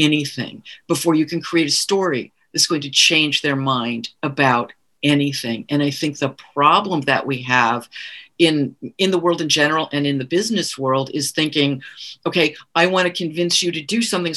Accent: American